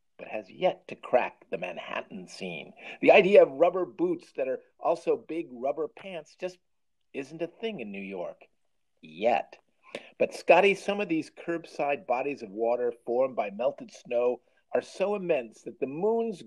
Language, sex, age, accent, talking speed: English, male, 50-69, American, 170 wpm